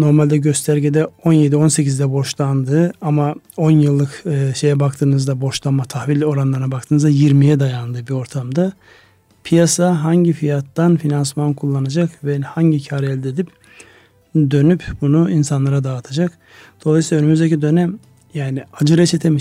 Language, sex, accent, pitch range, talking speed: Turkish, male, native, 135-155 Hz, 120 wpm